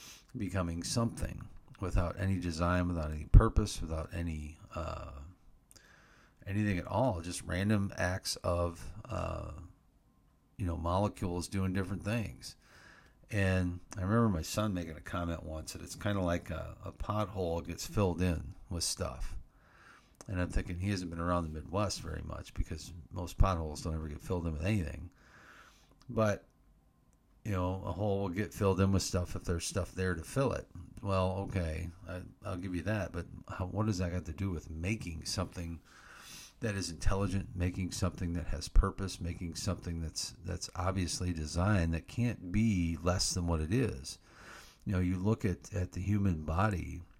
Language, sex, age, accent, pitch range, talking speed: English, male, 50-69, American, 85-100 Hz, 170 wpm